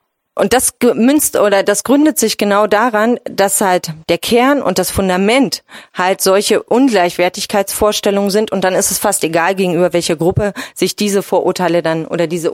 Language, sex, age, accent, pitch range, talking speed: German, female, 30-49, German, 175-220 Hz, 165 wpm